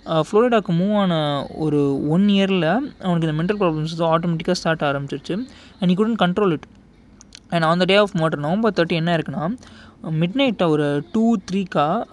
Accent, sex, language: native, male, Tamil